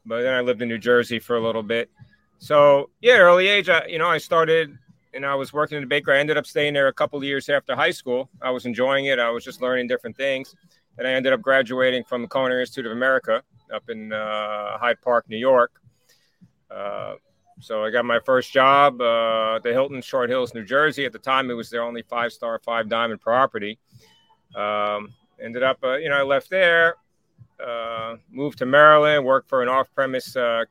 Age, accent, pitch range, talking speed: 40-59, American, 115-140 Hz, 215 wpm